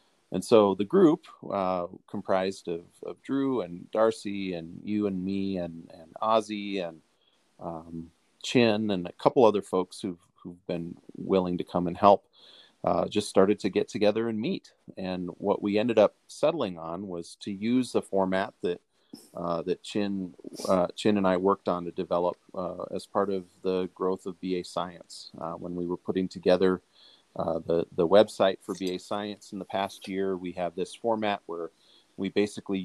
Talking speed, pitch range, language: 180 wpm, 90-105 Hz, English